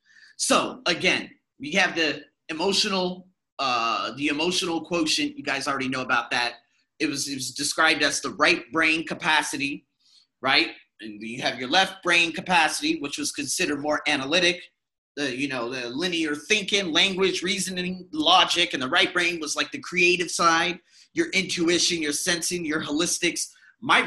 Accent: American